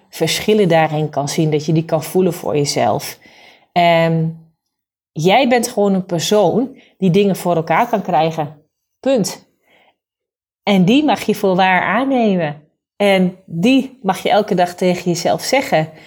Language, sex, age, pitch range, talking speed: Dutch, female, 30-49, 170-215 Hz, 145 wpm